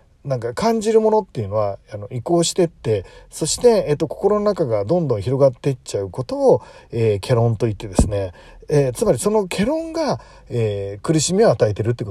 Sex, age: male, 40-59